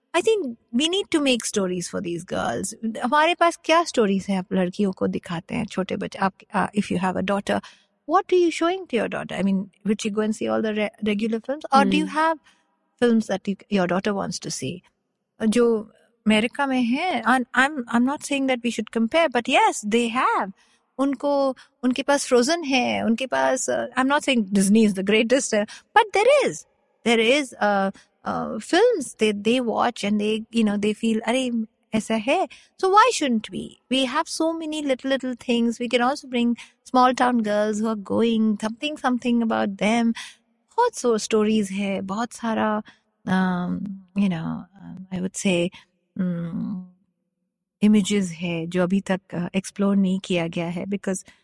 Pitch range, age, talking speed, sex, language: 195-255 Hz, 50-69, 185 wpm, female, Hindi